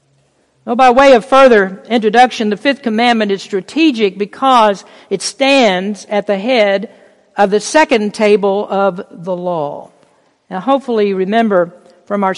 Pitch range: 205-270 Hz